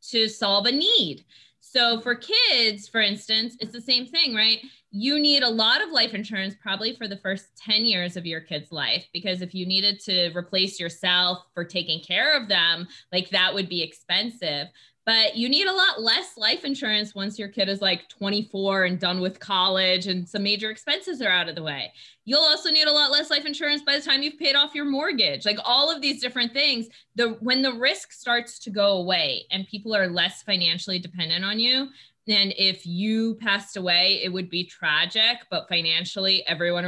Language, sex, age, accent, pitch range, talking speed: English, female, 20-39, American, 185-240 Hz, 205 wpm